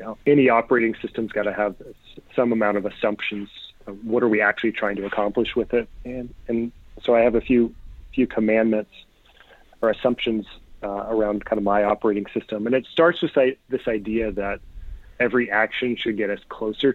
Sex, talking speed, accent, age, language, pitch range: male, 190 wpm, American, 40-59, English, 105-125 Hz